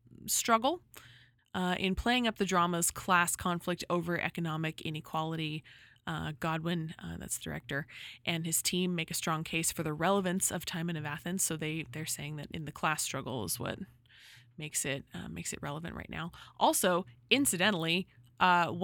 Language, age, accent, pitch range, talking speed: English, 20-39, American, 150-185 Hz, 175 wpm